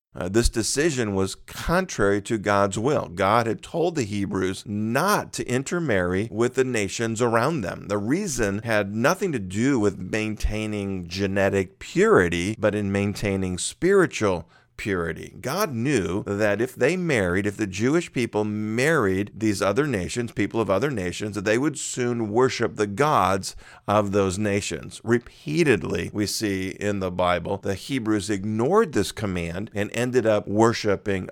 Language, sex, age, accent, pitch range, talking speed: English, male, 50-69, American, 100-120 Hz, 150 wpm